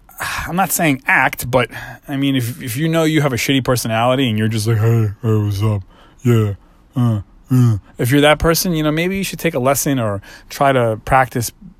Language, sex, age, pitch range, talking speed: English, male, 30-49, 115-150 Hz, 220 wpm